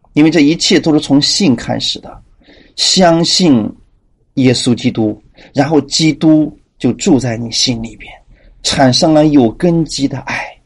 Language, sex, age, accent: Chinese, male, 30-49, native